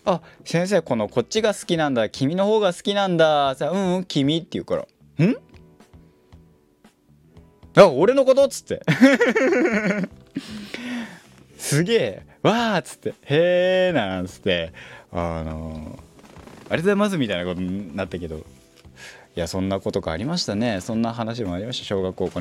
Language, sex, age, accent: Japanese, male, 20-39, native